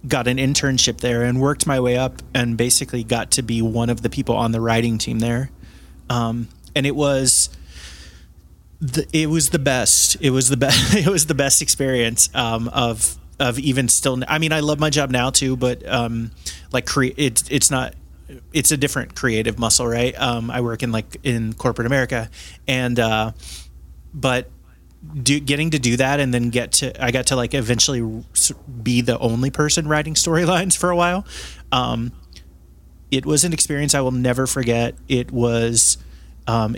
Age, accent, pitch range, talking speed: 30-49, American, 115-135 Hz, 185 wpm